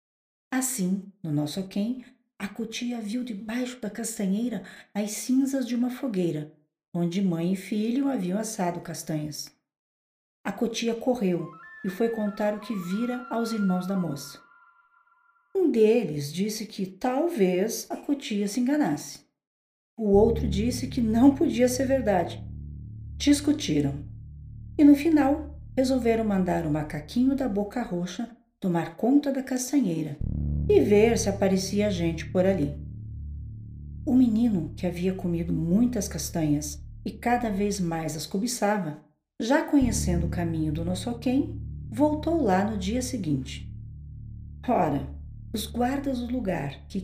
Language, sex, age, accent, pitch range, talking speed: Portuguese, female, 50-69, Brazilian, 160-245 Hz, 135 wpm